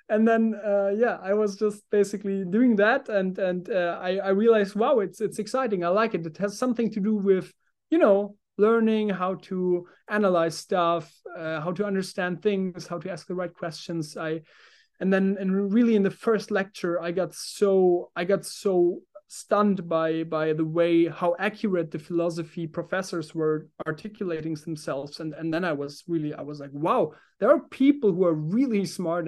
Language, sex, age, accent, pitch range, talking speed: English, male, 30-49, German, 170-210 Hz, 190 wpm